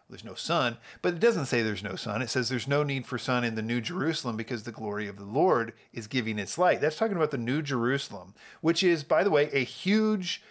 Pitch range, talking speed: 115-155 Hz, 250 wpm